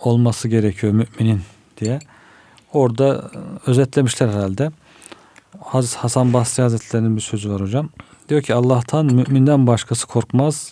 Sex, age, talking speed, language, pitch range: male, 50-69, 110 wpm, Turkish, 110-130 Hz